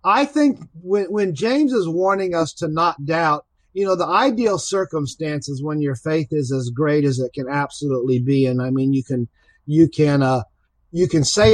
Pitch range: 150-195 Hz